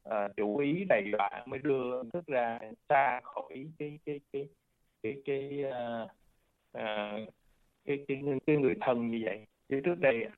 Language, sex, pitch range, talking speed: Vietnamese, male, 110-140 Hz, 160 wpm